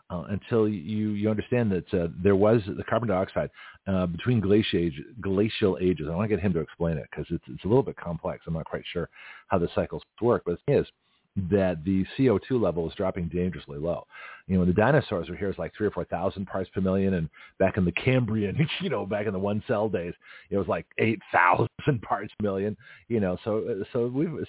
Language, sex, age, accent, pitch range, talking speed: English, male, 40-59, American, 90-110 Hz, 225 wpm